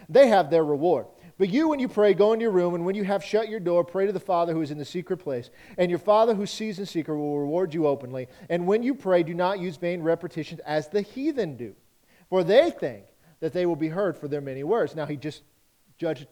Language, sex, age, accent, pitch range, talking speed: English, male, 40-59, American, 155-200 Hz, 255 wpm